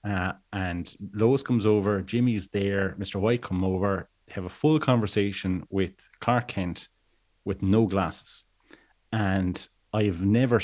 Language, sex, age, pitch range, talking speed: English, male, 30-49, 95-110 Hz, 140 wpm